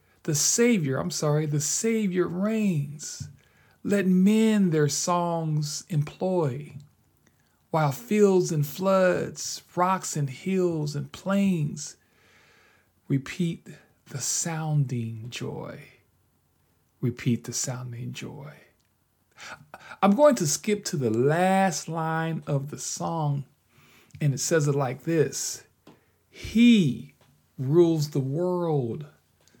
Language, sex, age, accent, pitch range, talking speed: English, male, 40-59, American, 130-180 Hz, 100 wpm